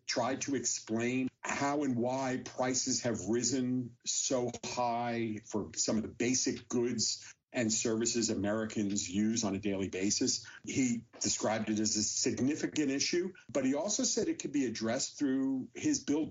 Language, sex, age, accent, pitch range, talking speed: English, male, 50-69, American, 115-140 Hz, 160 wpm